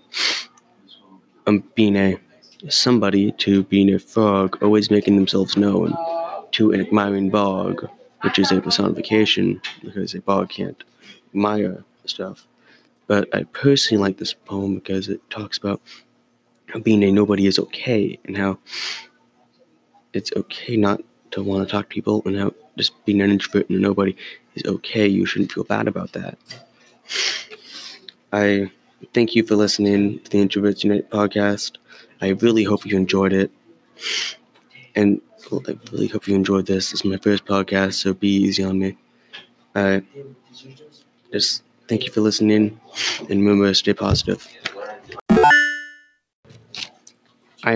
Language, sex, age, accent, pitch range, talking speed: English, male, 20-39, American, 95-105 Hz, 145 wpm